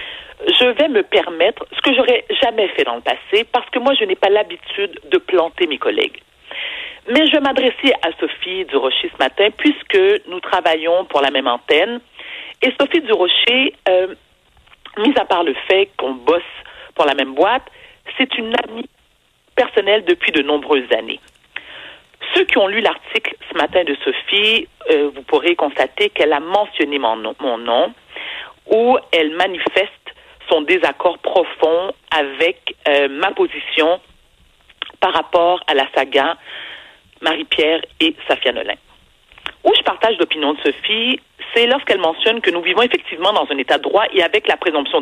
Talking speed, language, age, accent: 165 wpm, French, 50-69, French